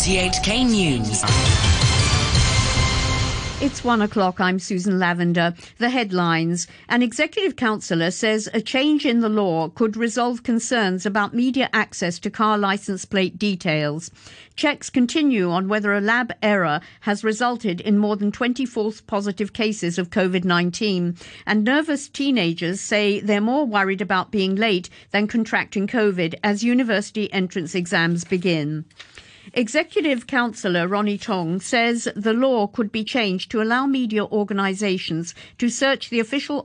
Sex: female